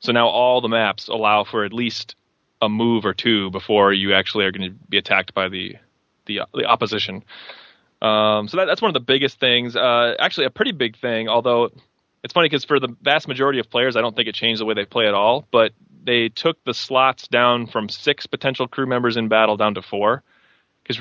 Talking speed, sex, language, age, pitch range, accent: 225 wpm, male, English, 20-39, 105-120 Hz, American